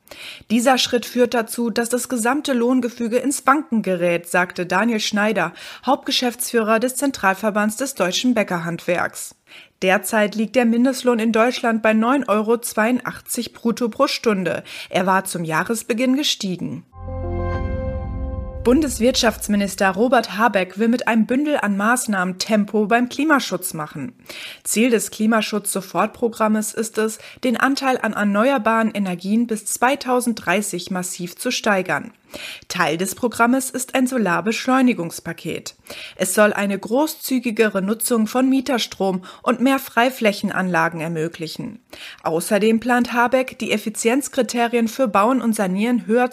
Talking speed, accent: 120 wpm, German